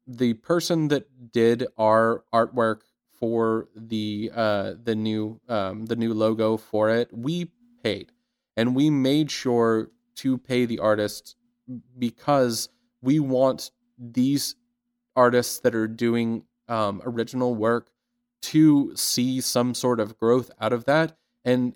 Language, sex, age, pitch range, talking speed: English, male, 30-49, 115-140 Hz, 130 wpm